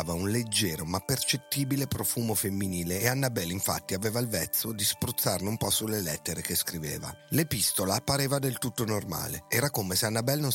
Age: 40-59